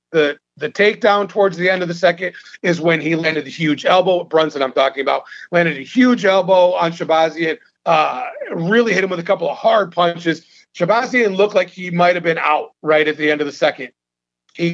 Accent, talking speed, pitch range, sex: American, 210 wpm, 160-185 Hz, male